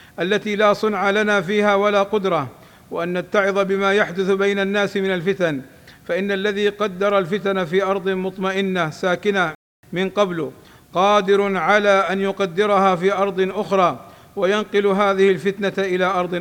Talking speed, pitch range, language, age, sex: 135 wpm, 175-195 Hz, Arabic, 50-69, male